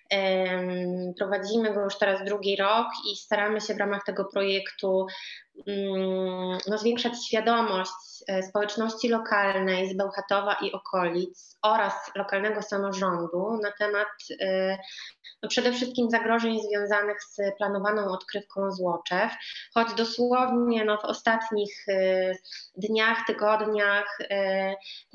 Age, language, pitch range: 20-39, Polish, 185-210 Hz